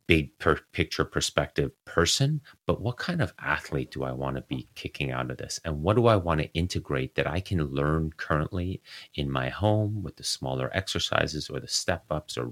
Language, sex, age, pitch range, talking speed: English, male, 30-49, 70-85 Hz, 200 wpm